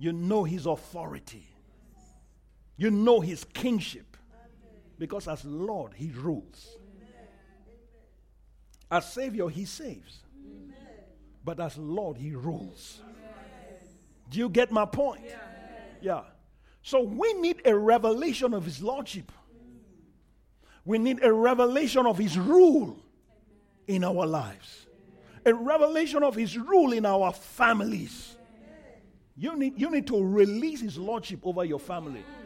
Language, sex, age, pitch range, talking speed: English, male, 50-69, 175-250 Hz, 120 wpm